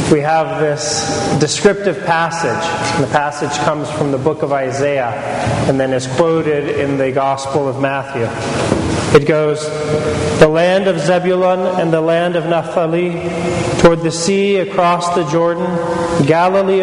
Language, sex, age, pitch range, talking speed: English, male, 30-49, 140-170 Hz, 145 wpm